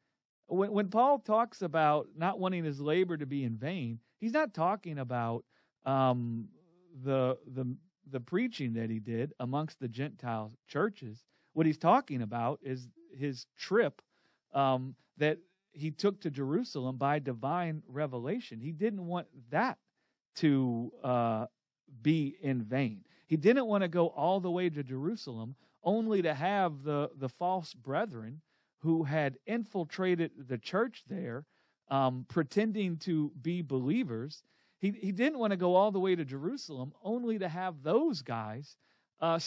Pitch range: 135-200 Hz